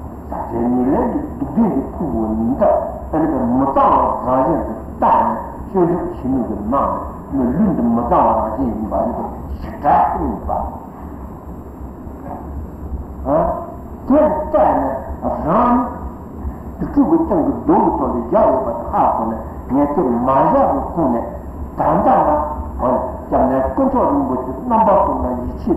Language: Italian